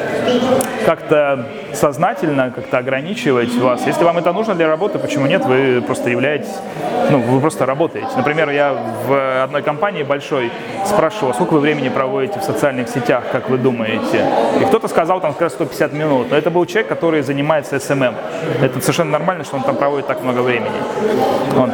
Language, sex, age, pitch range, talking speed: Russian, male, 20-39, 135-175 Hz, 175 wpm